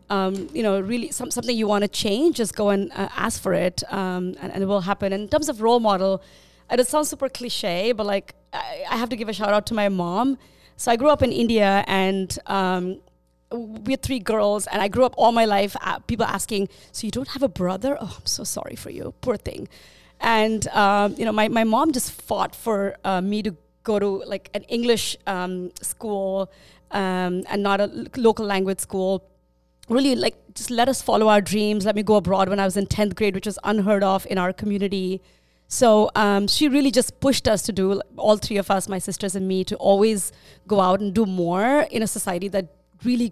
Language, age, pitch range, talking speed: English, 30-49, 190-230 Hz, 225 wpm